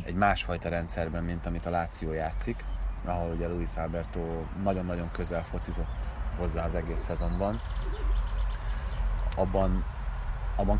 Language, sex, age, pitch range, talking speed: Hungarian, male, 30-49, 85-95 Hz, 115 wpm